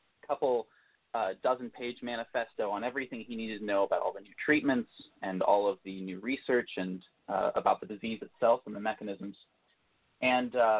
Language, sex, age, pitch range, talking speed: English, male, 30-49, 105-130 Hz, 180 wpm